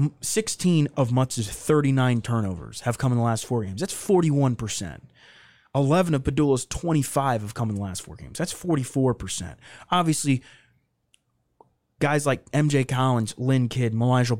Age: 20-39